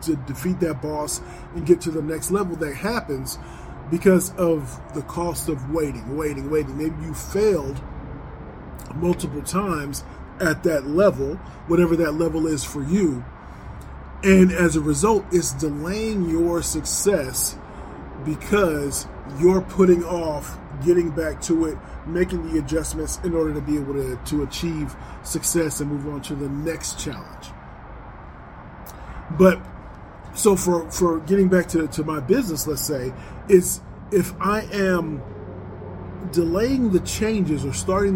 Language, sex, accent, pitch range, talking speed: English, male, American, 140-175 Hz, 140 wpm